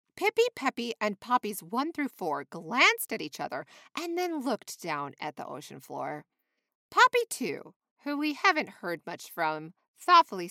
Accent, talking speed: American, 160 wpm